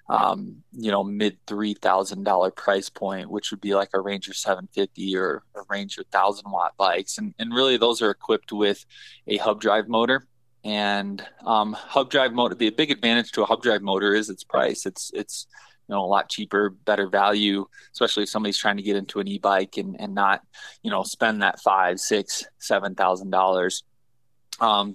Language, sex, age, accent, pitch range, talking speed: English, male, 20-39, American, 100-115 Hz, 195 wpm